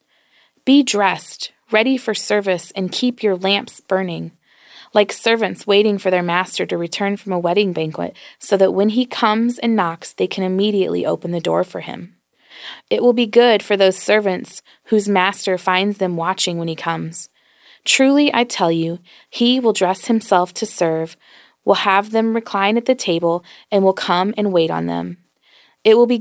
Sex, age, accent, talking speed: female, 20-39, American, 180 wpm